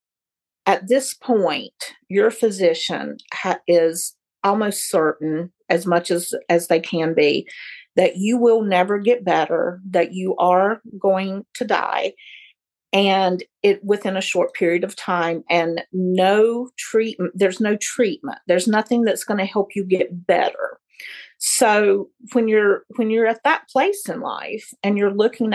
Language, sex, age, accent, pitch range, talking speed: English, female, 40-59, American, 180-230 Hz, 150 wpm